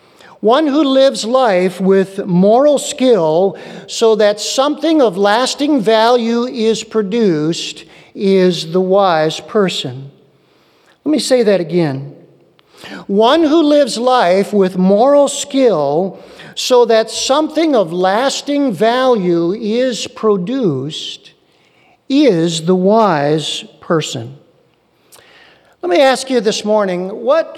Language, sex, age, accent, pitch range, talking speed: English, male, 50-69, American, 170-235 Hz, 110 wpm